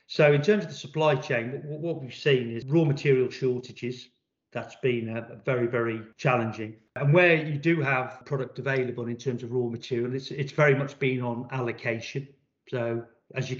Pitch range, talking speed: 125-145 Hz, 190 wpm